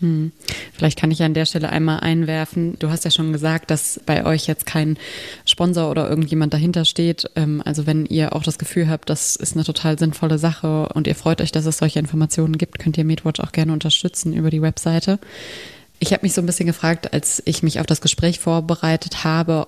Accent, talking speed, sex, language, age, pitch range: German, 215 wpm, female, German, 20-39, 155-165 Hz